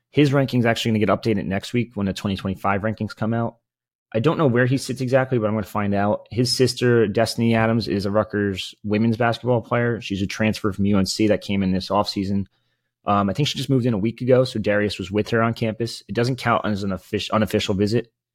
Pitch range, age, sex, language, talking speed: 95-120 Hz, 30-49, male, English, 235 wpm